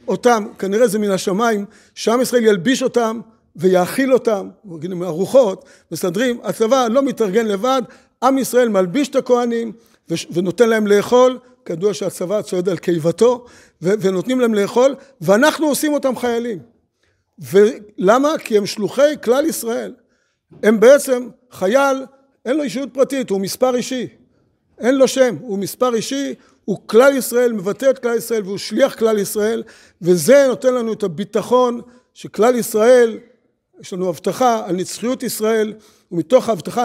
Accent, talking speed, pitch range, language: native, 140 wpm, 200-250 Hz, Hebrew